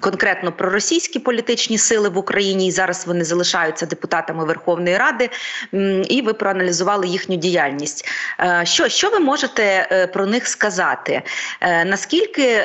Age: 30-49